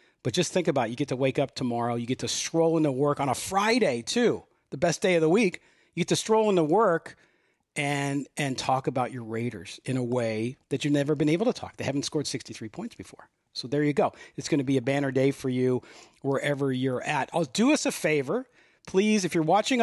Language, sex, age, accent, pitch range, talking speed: English, male, 40-59, American, 125-170 Hz, 240 wpm